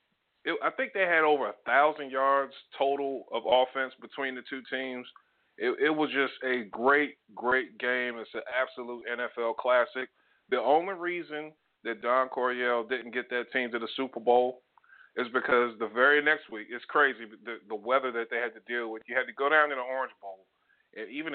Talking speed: 195 wpm